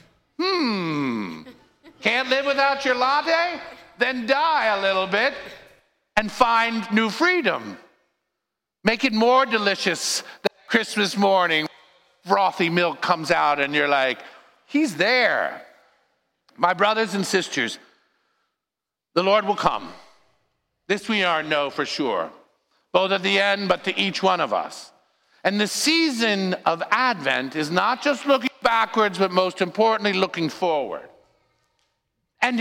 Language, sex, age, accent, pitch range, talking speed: English, male, 50-69, American, 180-235 Hz, 130 wpm